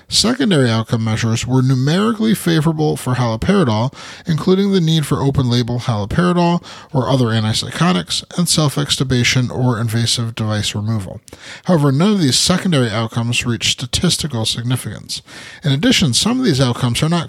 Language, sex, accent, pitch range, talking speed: English, male, American, 115-160 Hz, 140 wpm